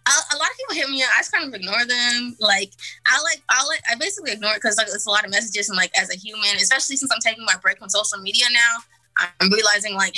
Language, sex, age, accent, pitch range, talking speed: Spanish, female, 20-39, American, 190-230 Hz, 270 wpm